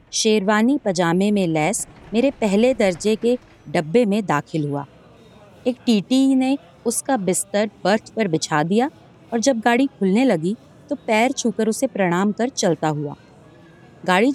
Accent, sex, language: native, female, Hindi